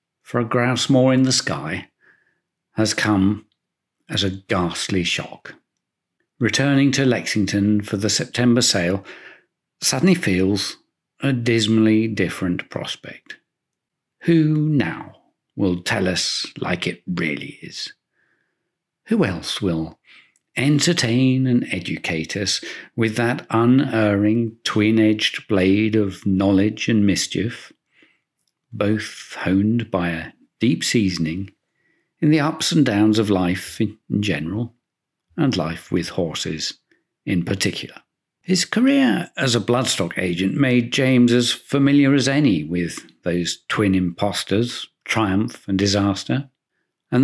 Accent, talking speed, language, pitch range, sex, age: British, 115 wpm, English, 100-130 Hz, male, 50-69